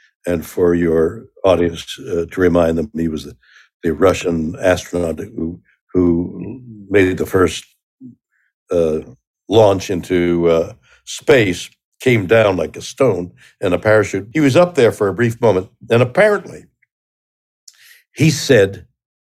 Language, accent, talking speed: English, American, 135 wpm